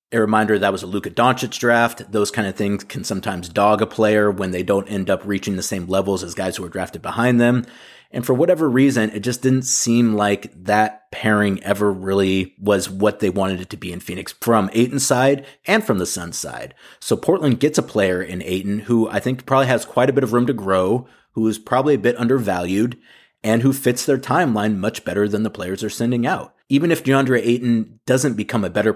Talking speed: 225 wpm